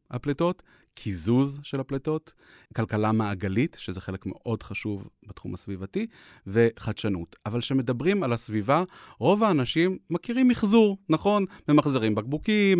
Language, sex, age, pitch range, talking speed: Hebrew, male, 30-49, 105-165 Hz, 115 wpm